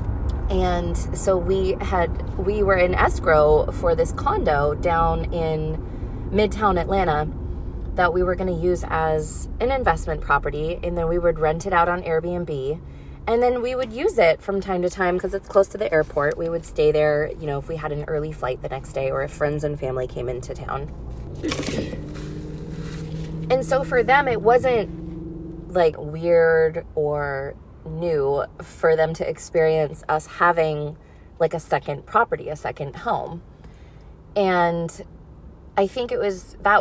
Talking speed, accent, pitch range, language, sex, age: 165 wpm, American, 150-195 Hz, English, female, 20-39